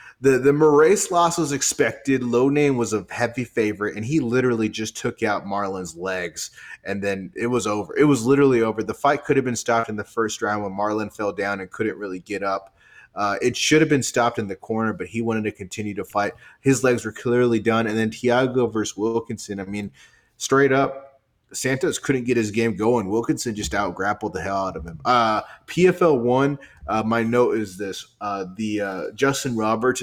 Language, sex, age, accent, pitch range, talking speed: English, male, 30-49, American, 105-130 Hz, 210 wpm